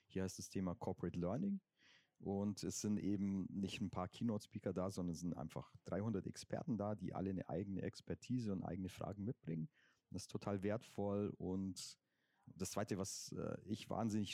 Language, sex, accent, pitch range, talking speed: German, male, German, 95-110 Hz, 175 wpm